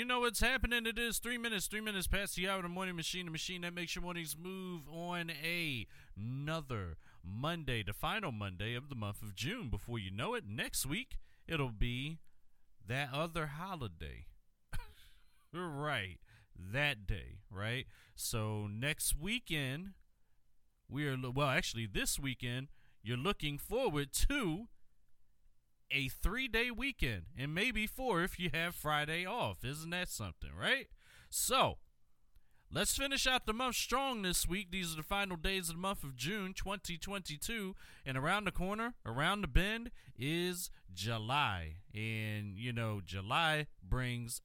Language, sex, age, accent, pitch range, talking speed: English, male, 30-49, American, 110-185 Hz, 155 wpm